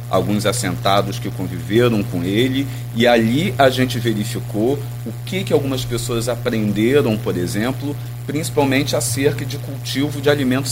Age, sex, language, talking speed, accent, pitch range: 40-59, male, Portuguese, 140 wpm, Brazilian, 115-140 Hz